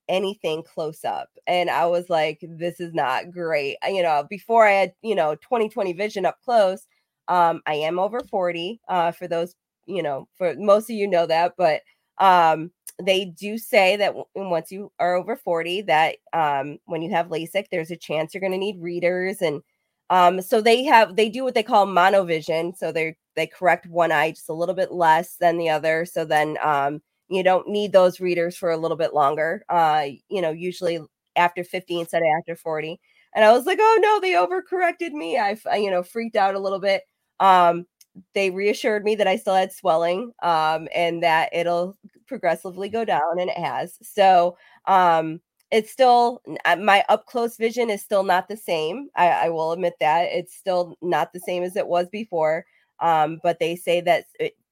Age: 20-39